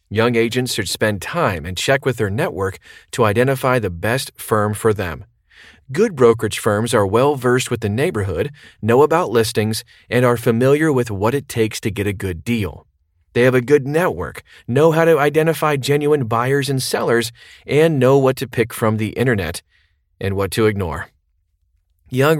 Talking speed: 175 wpm